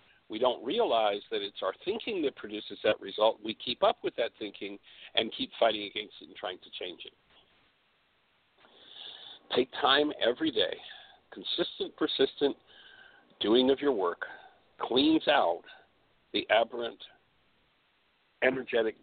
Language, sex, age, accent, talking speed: English, male, 60-79, American, 130 wpm